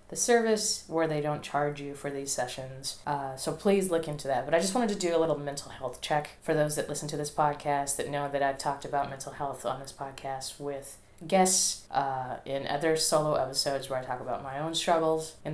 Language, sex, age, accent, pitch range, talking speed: English, female, 20-39, American, 140-160 Hz, 230 wpm